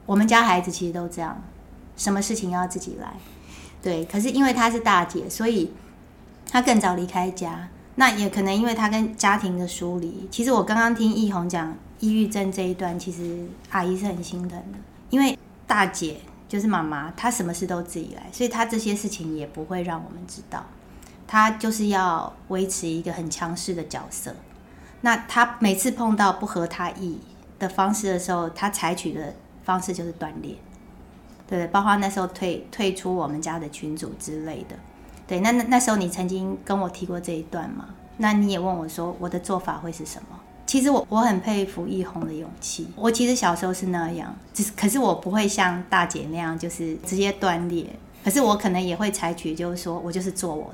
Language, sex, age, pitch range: Chinese, female, 20-39, 175-210 Hz